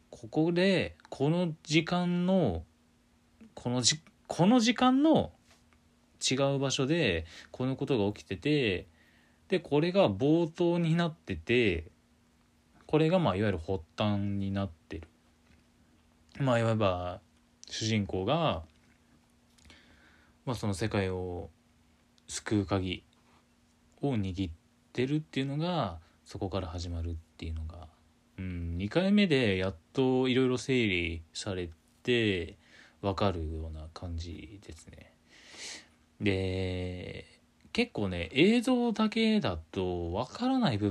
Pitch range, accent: 80-125 Hz, native